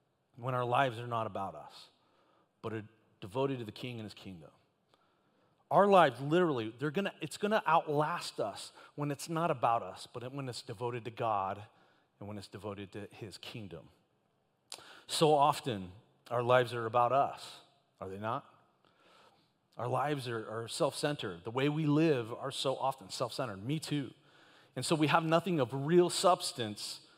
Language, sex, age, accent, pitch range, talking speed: English, male, 40-59, American, 110-150 Hz, 170 wpm